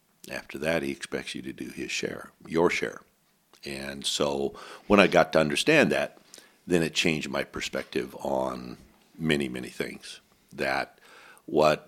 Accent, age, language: American, 60-79, English